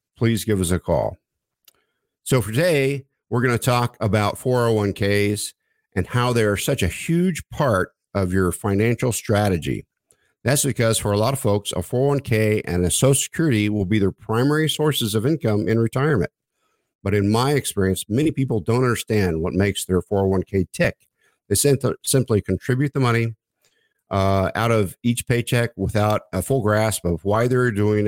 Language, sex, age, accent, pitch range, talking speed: English, male, 50-69, American, 95-120 Hz, 165 wpm